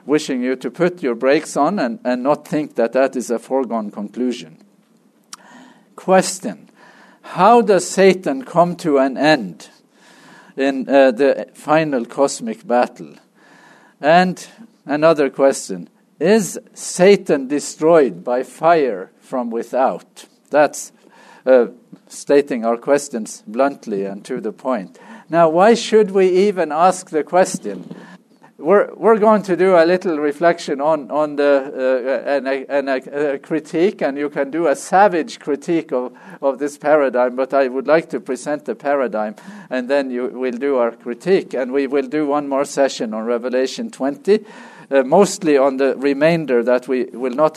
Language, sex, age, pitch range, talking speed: English, male, 50-69, 130-180 Hz, 155 wpm